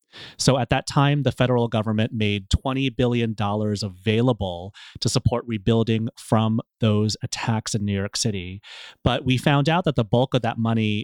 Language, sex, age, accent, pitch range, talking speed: English, male, 30-49, American, 110-135 Hz, 170 wpm